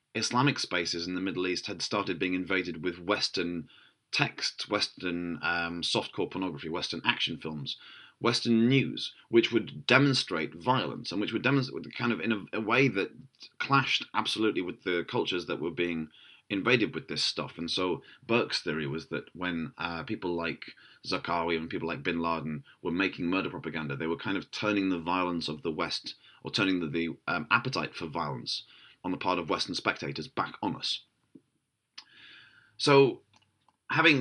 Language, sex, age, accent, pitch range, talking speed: English, male, 30-49, British, 85-105 Hz, 175 wpm